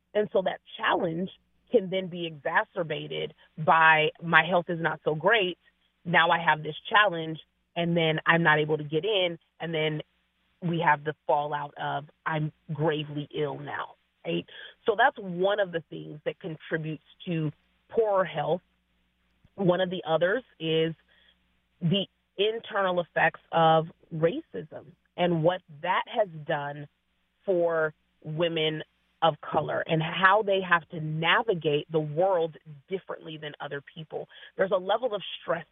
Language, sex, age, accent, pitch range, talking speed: English, female, 30-49, American, 155-175 Hz, 145 wpm